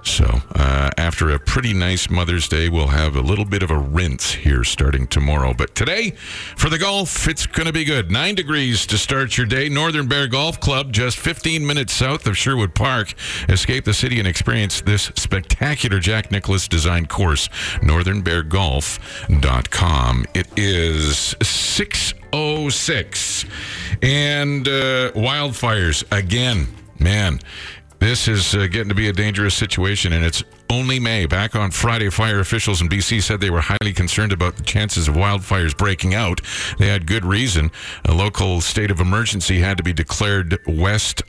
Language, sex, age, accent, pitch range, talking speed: English, male, 50-69, American, 80-110 Hz, 160 wpm